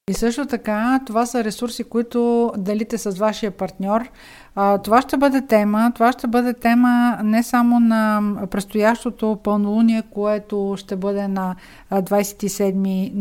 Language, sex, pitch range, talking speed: Bulgarian, female, 200-235 Hz, 130 wpm